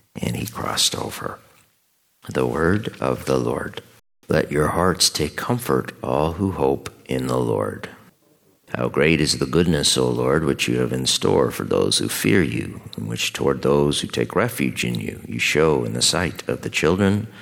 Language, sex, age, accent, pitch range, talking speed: English, male, 50-69, American, 65-85 Hz, 185 wpm